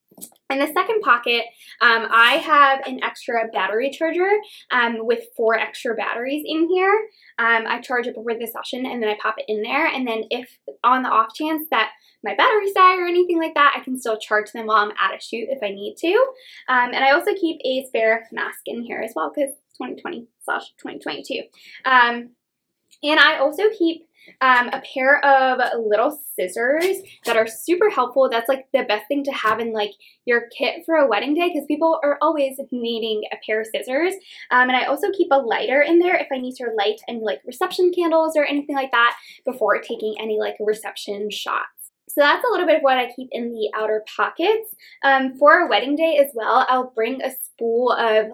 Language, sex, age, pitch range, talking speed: English, female, 20-39, 225-300 Hz, 210 wpm